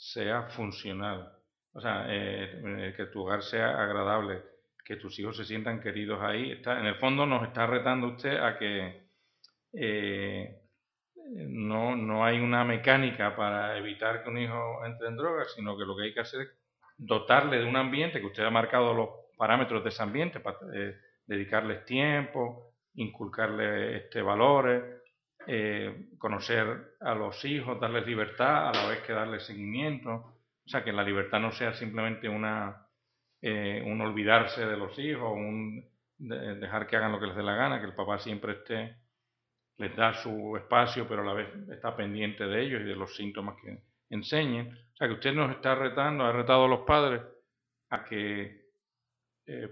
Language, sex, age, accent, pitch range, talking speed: English, male, 40-59, Spanish, 105-125 Hz, 175 wpm